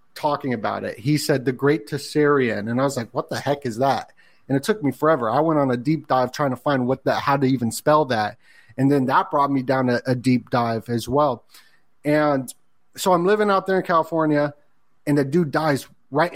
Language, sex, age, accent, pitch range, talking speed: English, male, 30-49, American, 125-150 Hz, 230 wpm